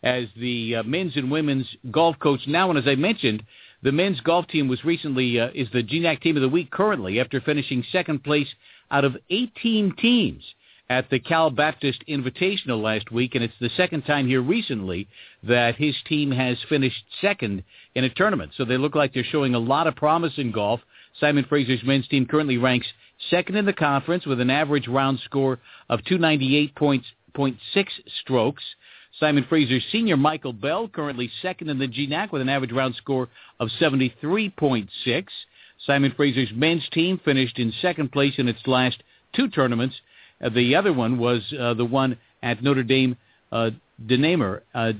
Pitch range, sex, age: 125-155 Hz, male, 50-69